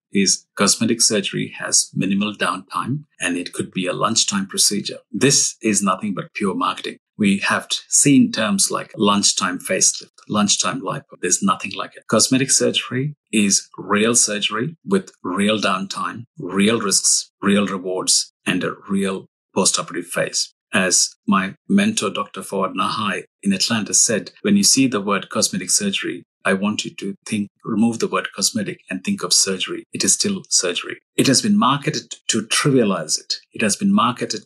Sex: male